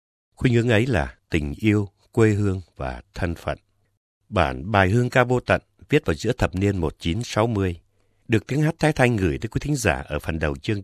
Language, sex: Vietnamese, male